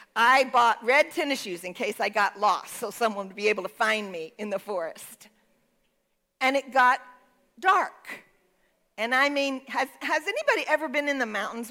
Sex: female